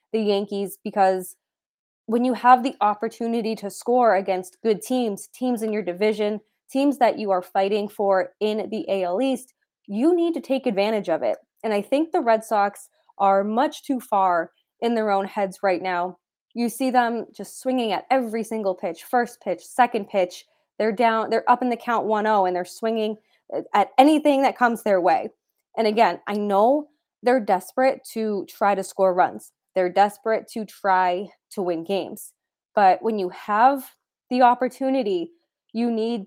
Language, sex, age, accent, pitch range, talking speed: English, female, 20-39, American, 200-245 Hz, 175 wpm